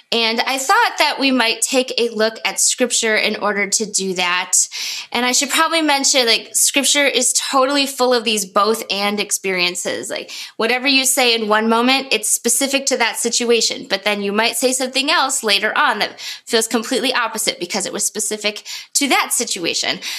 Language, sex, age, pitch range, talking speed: English, female, 20-39, 210-265 Hz, 185 wpm